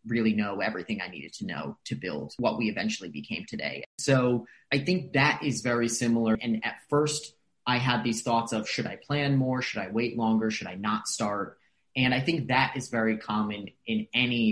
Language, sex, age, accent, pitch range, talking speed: English, male, 30-49, American, 110-140 Hz, 205 wpm